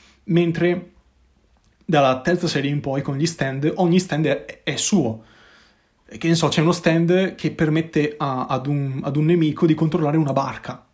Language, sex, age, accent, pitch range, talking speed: Italian, male, 20-39, native, 135-170 Hz, 175 wpm